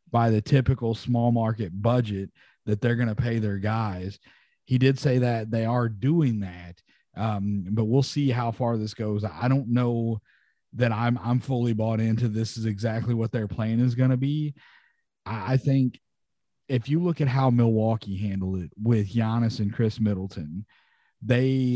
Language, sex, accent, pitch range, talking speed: English, male, American, 110-130 Hz, 175 wpm